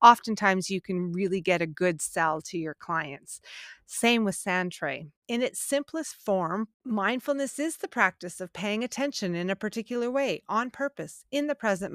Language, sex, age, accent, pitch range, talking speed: English, female, 30-49, American, 190-260 Hz, 175 wpm